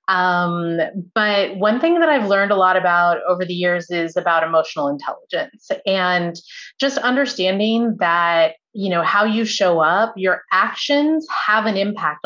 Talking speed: 155 wpm